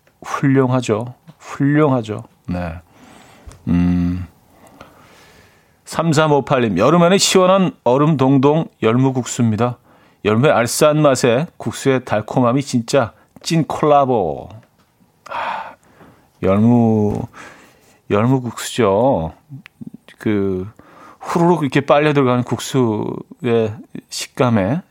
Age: 40-59